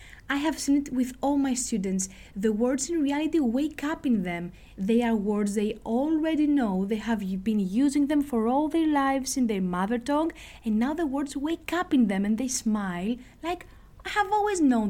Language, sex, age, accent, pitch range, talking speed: Greek, female, 20-39, Spanish, 220-295 Hz, 205 wpm